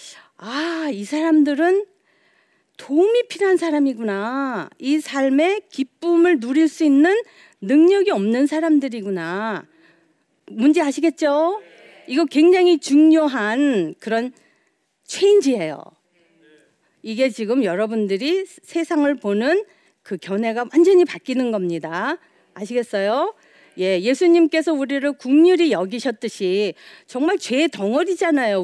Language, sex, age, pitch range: Korean, female, 40-59, 205-320 Hz